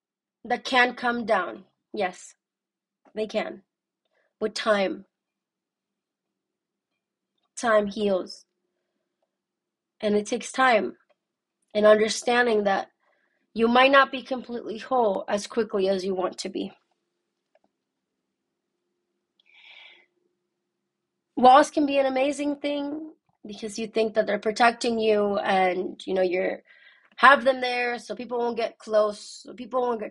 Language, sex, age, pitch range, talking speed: English, female, 20-39, 200-240 Hz, 120 wpm